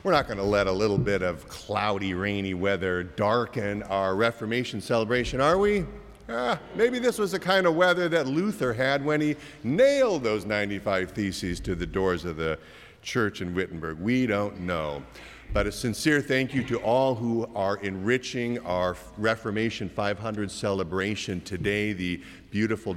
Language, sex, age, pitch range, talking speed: English, male, 50-69, 95-145 Hz, 160 wpm